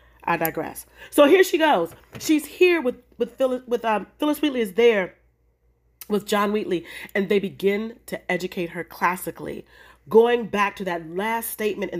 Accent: American